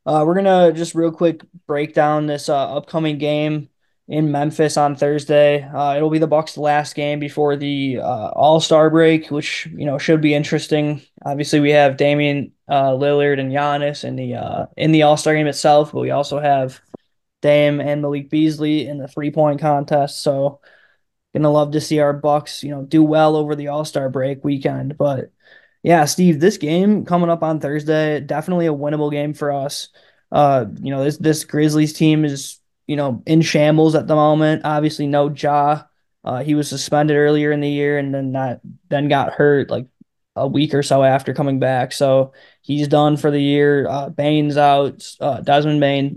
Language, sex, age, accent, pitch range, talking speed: English, male, 20-39, American, 140-155 Hz, 190 wpm